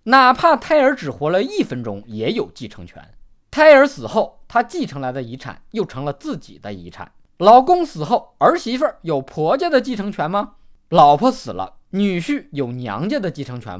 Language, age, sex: Chinese, 20-39, male